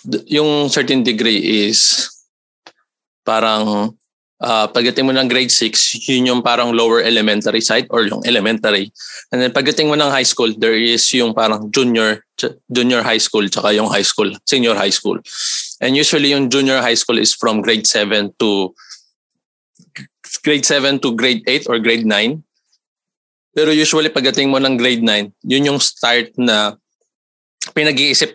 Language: Filipino